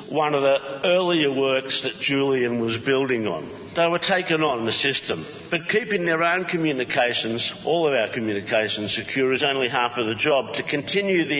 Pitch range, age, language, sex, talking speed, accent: 120-155 Hz, 50-69, English, male, 185 wpm, Australian